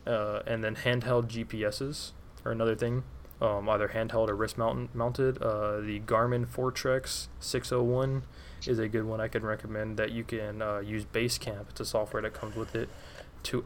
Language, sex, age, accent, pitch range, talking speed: English, male, 20-39, American, 105-115 Hz, 180 wpm